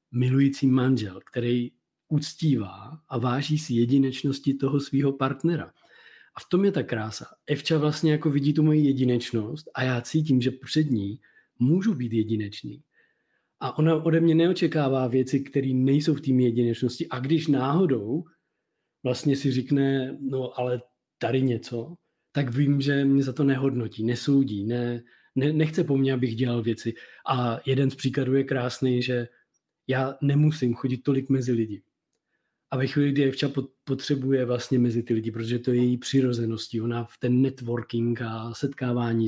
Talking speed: 155 wpm